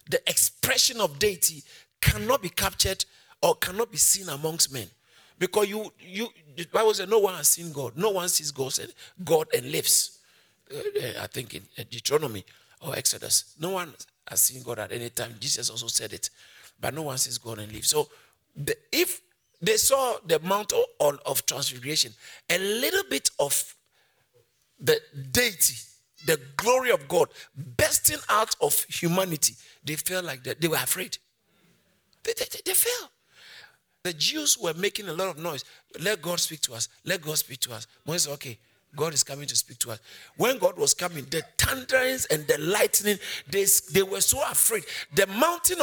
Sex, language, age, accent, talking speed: male, English, 50-69, Nigerian, 170 wpm